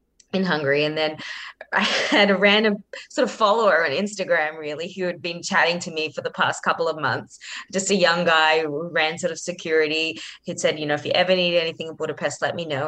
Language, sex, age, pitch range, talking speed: English, female, 20-39, 155-195 Hz, 230 wpm